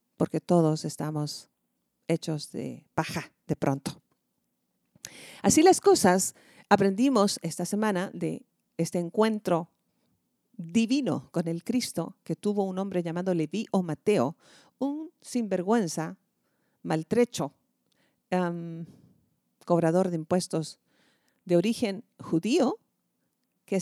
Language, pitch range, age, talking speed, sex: Spanish, 165-210 Hz, 50-69, 100 wpm, female